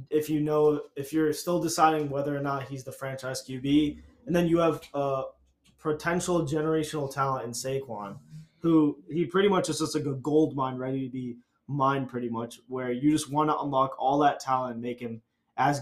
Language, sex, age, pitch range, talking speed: English, male, 20-39, 130-155 Hz, 205 wpm